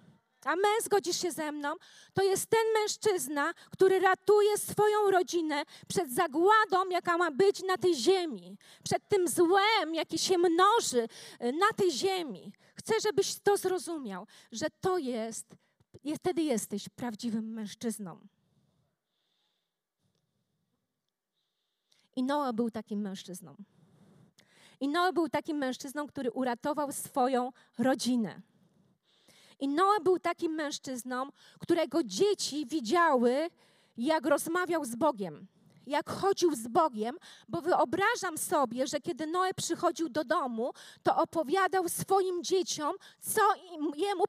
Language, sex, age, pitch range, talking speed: Polish, female, 20-39, 225-370 Hz, 120 wpm